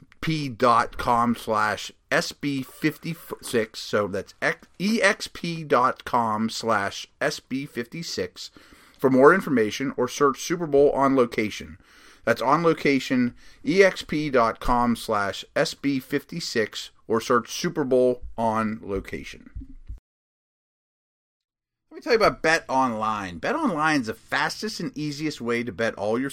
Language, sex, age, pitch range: English, male, 30-49, 110-145 Hz